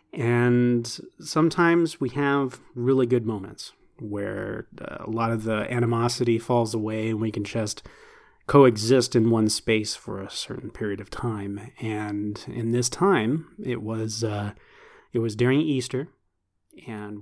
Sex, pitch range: male, 105-125 Hz